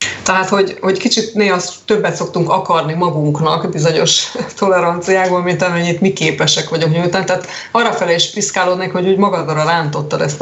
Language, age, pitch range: Hungarian, 30-49, 155-195 Hz